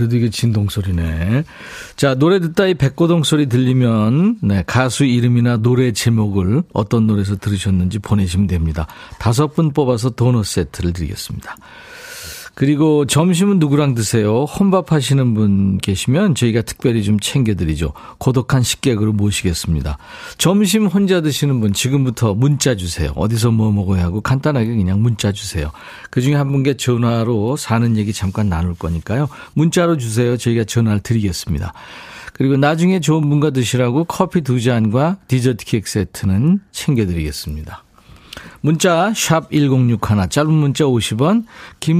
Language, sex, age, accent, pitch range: Korean, male, 40-59, native, 105-150 Hz